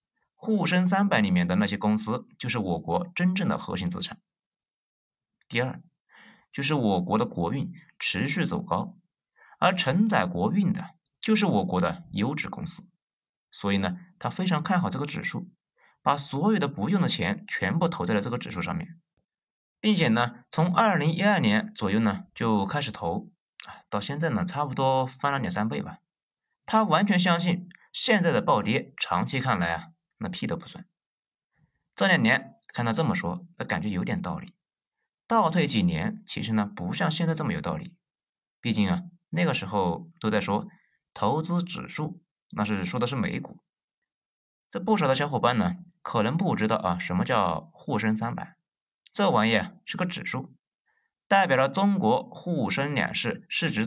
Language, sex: Chinese, male